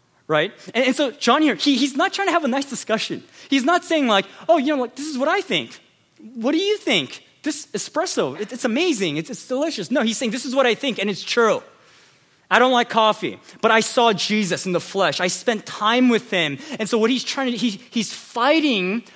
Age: 20-39